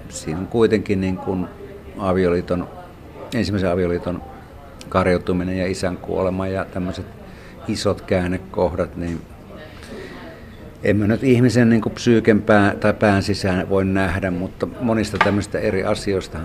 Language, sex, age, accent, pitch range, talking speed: Finnish, male, 50-69, native, 90-105 Hz, 120 wpm